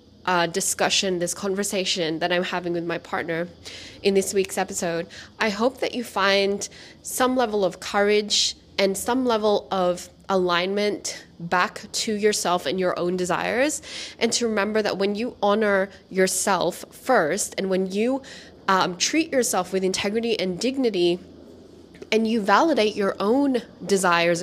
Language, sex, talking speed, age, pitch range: English, female, 145 wpm, 20-39, 180-215 Hz